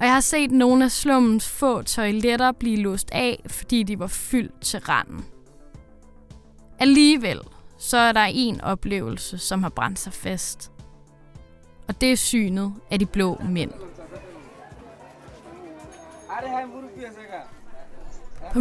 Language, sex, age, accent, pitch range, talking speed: English, female, 20-39, Danish, 195-250 Hz, 125 wpm